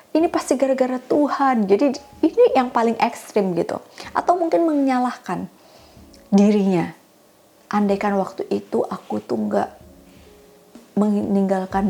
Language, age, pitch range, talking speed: Indonesian, 30-49, 190-255 Hz, 105 wpm